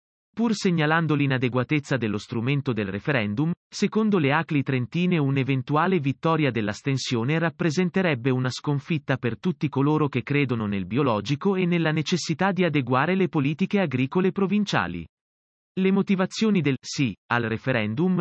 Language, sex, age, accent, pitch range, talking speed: Italian, male, 30-49, native, 125-155 Hz, 130 wpm